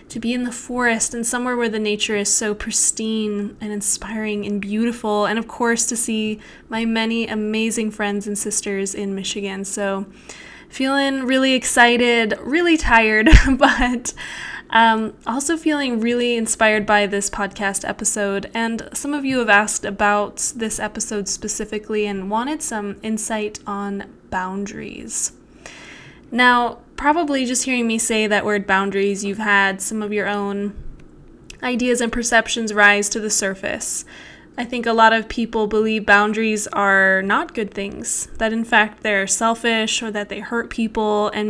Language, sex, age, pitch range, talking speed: English, female, 10-29, 205-235 Hz, 155 wpm